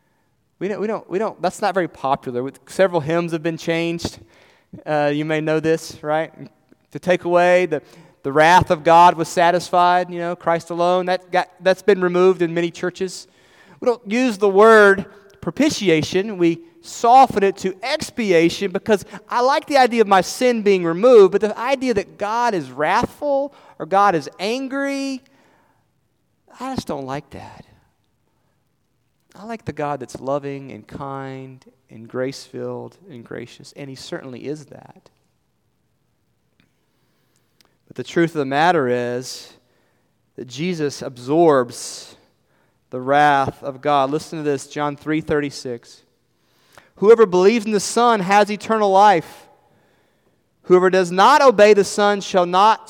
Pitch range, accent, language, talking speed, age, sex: 140-200 Hz, American, English, 145 wpm, 30-49, male